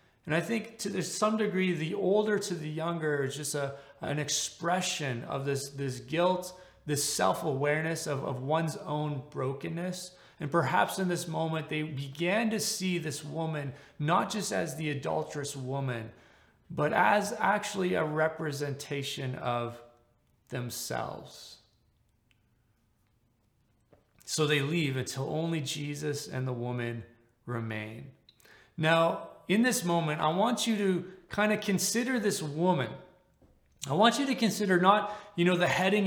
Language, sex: English, male